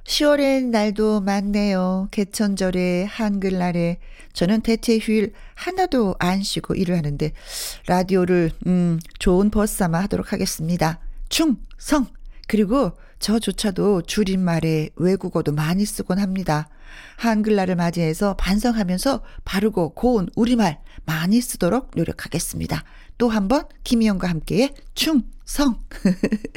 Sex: female